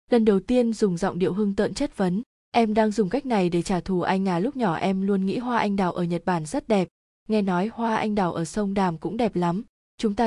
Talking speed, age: 270 wpm, 20-39